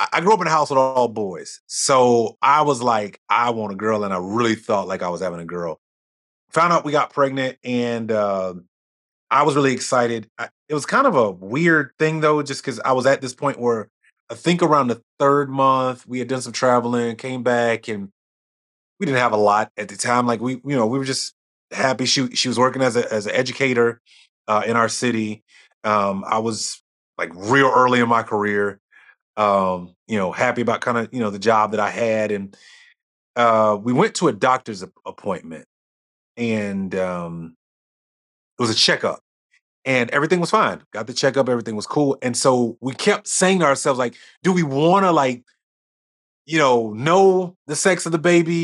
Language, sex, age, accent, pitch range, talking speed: English, male, 30-49, American, 110-145 Hz, 205 wpm